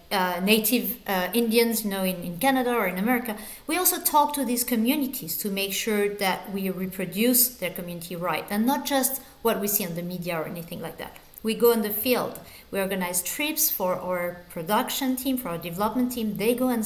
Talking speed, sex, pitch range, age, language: 210 wpm, female, 200-245 Hz, 40-59, English